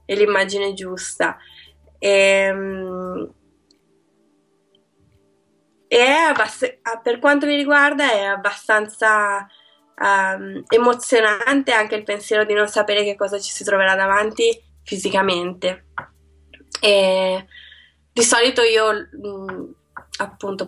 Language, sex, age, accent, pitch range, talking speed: Italian, female, 20-39, native, 190-225 Hz, 85 wpm